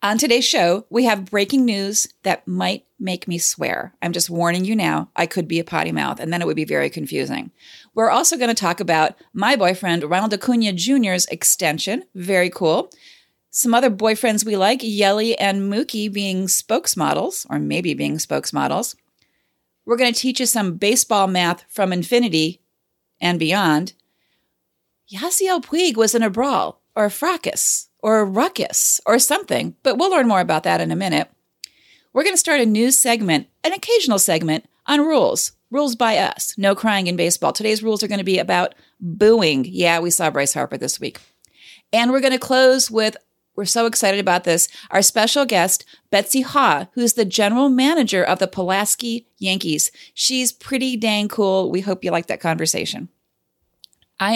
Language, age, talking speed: English, 40-59, 180 wpm